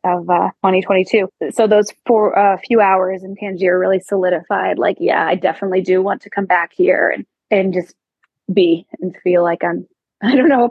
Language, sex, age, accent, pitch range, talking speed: English, female, 20-39, American, 185-230 Hz, 200 wpm